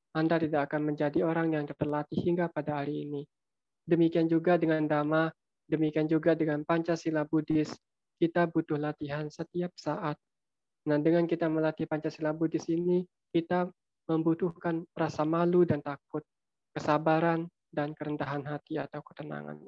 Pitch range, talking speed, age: 150-165 Hz, 135 wpm, 20-39